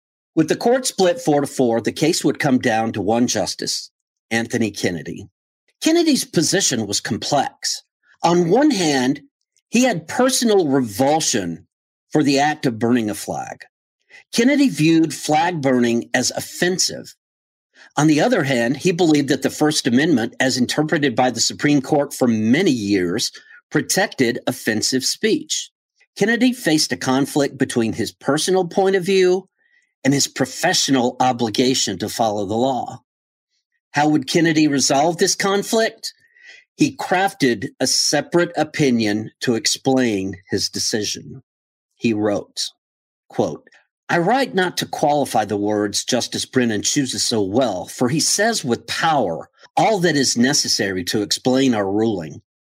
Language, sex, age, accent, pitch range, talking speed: English, male, 50-69, American, 120-175 Hz, 140 wpm